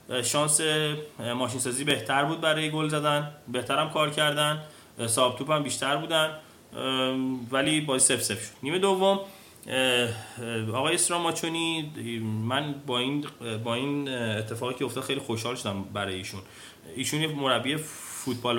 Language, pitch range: Persian, 115-145 Hz